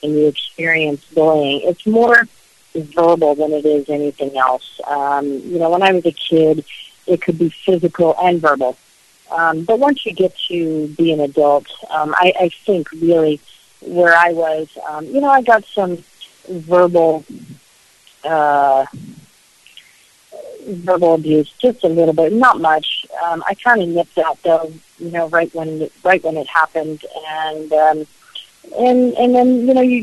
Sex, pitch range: female, 150-180 Hz